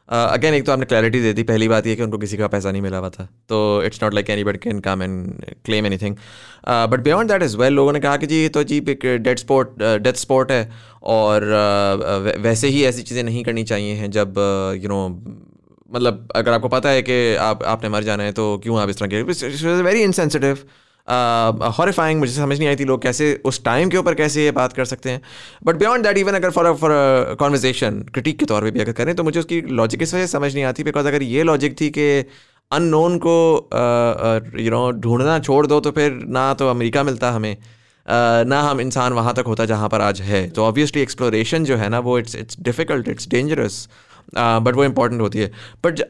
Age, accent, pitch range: 20-39, Indian, 110-140 Hz